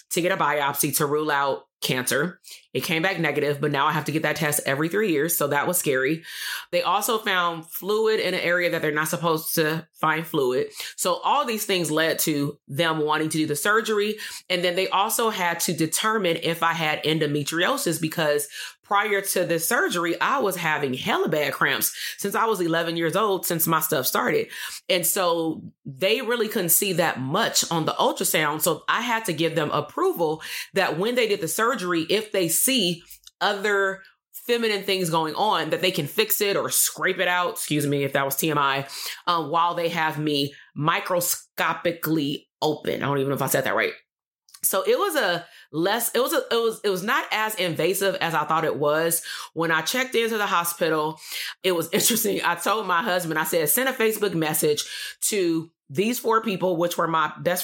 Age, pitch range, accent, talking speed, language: 30-49, 155-200 Hz, American, 205 wpm, English